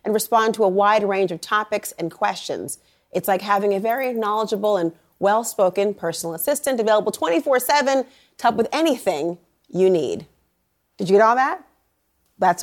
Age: 30-49